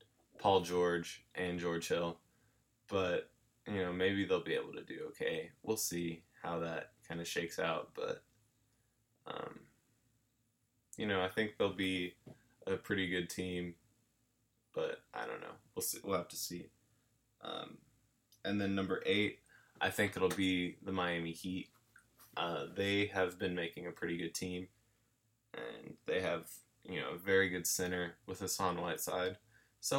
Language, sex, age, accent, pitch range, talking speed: English, male, 20-39, American, 90-115 Hz, 160 wpm